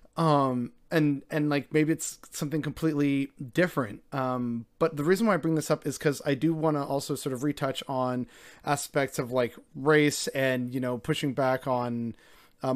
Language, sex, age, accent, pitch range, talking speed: English, male, 30-49, American, 130-165 Hz, 190 wpm